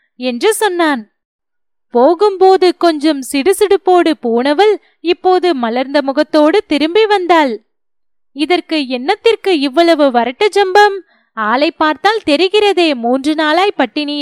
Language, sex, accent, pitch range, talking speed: Tamil, female, native, 270-380 Hz, 90 wpm